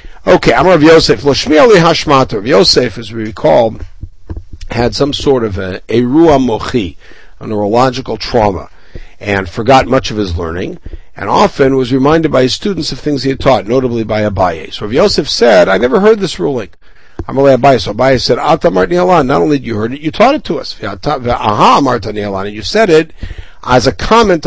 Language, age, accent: English, 60-79, American